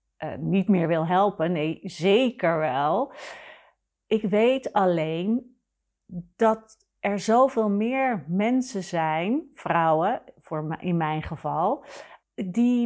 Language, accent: Dutch, Dutch